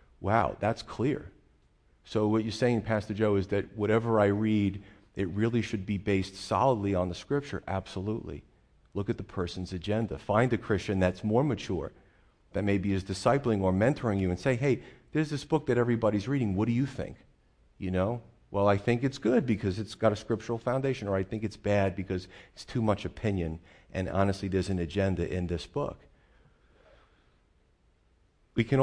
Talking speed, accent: 185 wpm, American